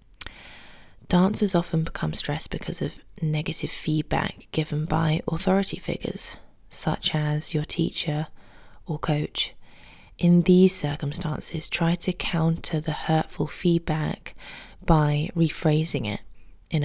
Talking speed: 110 wpm